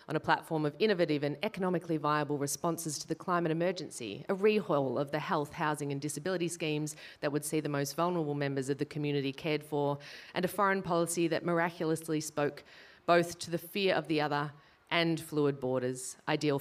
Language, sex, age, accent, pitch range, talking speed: English, female, 30-49, Australian, 135-165 Hz, 190 wpm